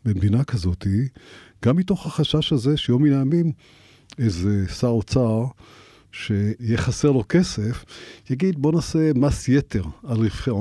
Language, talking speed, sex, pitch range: Hebrew, 135 wpm, male, 105-130 Hz